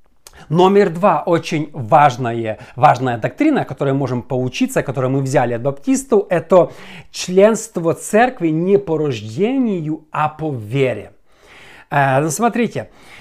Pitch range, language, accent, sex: 145-210 Hz, Russian, native, male